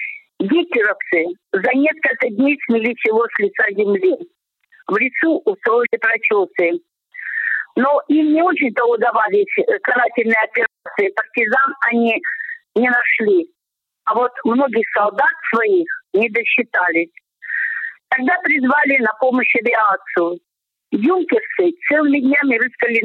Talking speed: 105 wpm